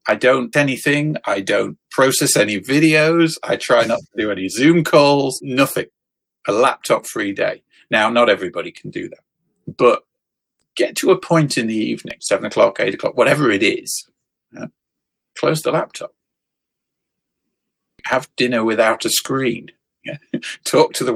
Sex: male